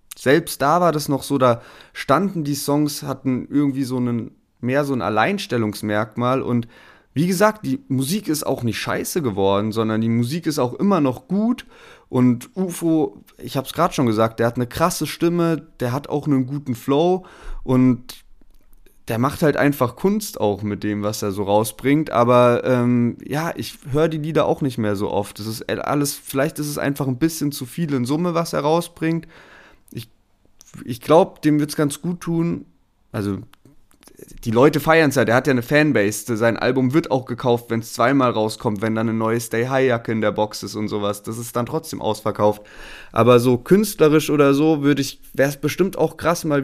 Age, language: 30-49, German